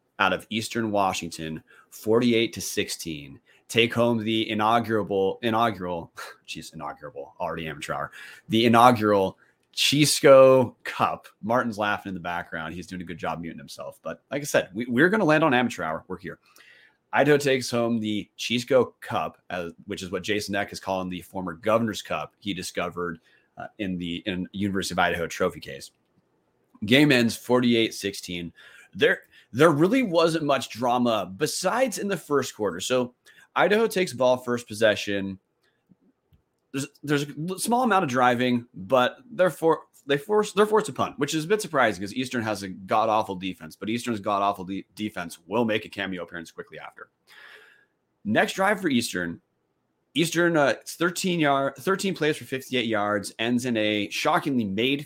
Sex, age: male, 30-49